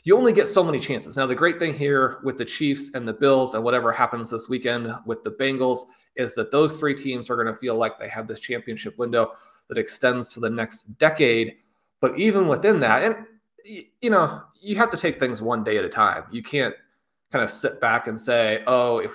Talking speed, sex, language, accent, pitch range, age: 230 wpm, male, English, American, 115-145 Hz, 30-49